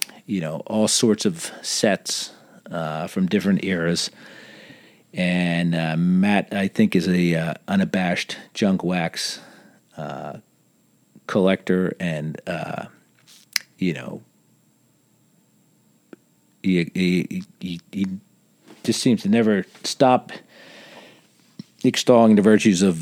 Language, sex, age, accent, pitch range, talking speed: English, male, 40-59, American, 90-130 Hz, 105 wpm